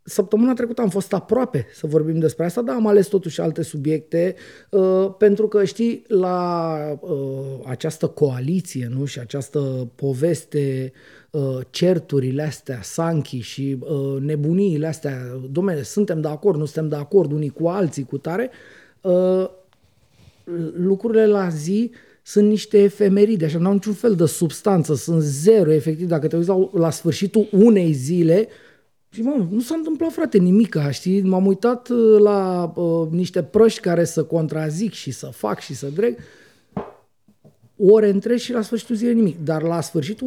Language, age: Romanian, 30-49